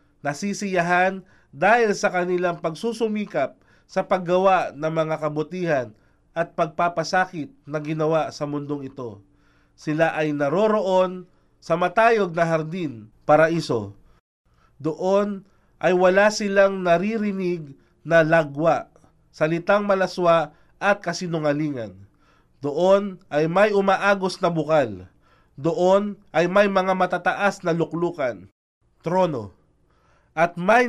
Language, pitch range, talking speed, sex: Filipino, 150-190 Hz, 100 wpm, male